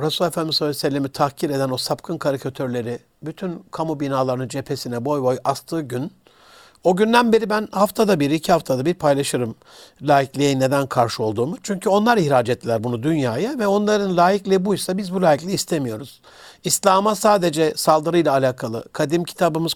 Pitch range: 145-205 Hz